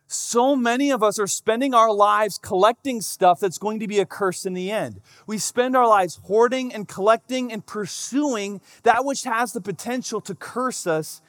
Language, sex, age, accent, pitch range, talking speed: English, male, 30-49, American, 145-210 Hz, 190 wpm